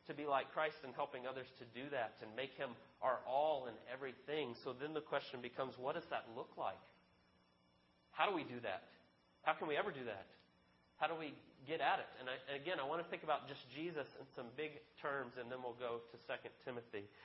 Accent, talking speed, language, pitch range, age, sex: American, 225 wpm, English, 120-155 Hz, 30-49, male